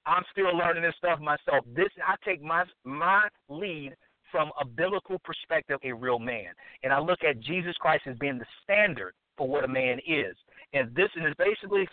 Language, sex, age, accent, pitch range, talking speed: English, male, 50-69, American, 155-205 Hz, 190 wpm